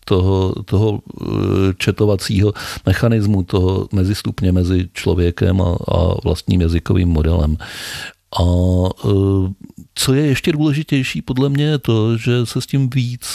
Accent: native